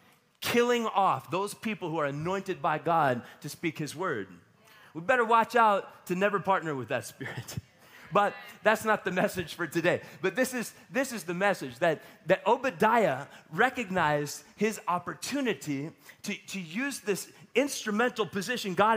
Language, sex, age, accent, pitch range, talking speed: English, male, 30-49, American, 170-220 Hz, 160 wpm